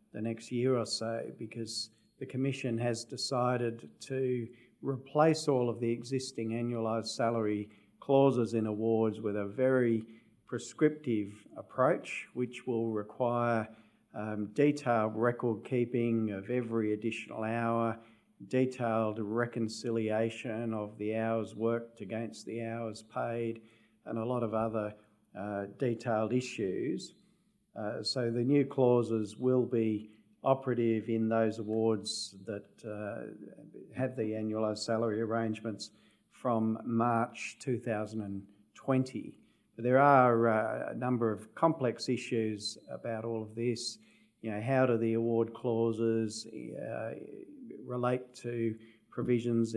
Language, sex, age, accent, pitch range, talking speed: English, male, 50-69, Australian, 110-120 Hz, 120 wpm